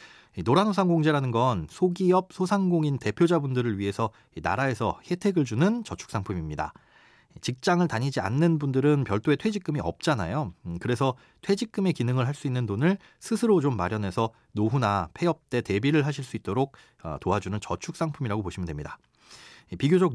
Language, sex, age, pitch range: Korean, male, 30-49, 110-165 Hz